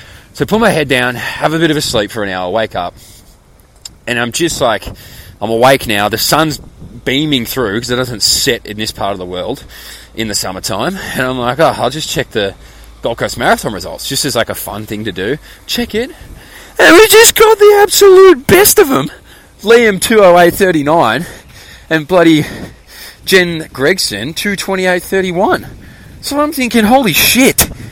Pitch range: 115-185 Hz